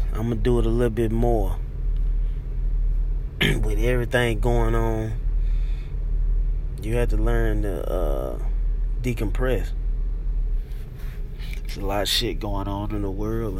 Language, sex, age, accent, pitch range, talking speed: English, male, 20-39, American, 70-115 Hz, 130 wpm